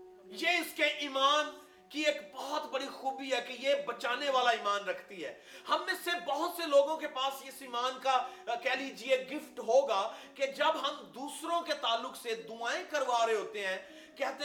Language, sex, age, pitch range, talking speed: Urdu, male, 30-49, 245-305 Hz, 185 wpm